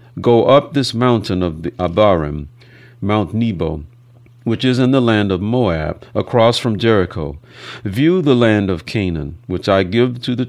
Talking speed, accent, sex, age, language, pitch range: 160 wpm, American, male, 50-69, English, 90-120 Hz